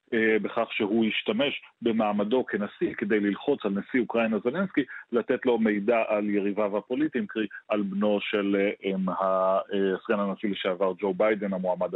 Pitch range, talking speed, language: 105-125 Hz, 130 wpm, Hebrew